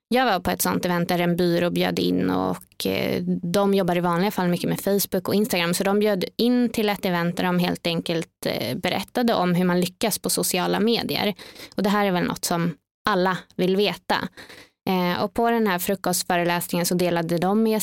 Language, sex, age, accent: English, female, 20-39, Swedish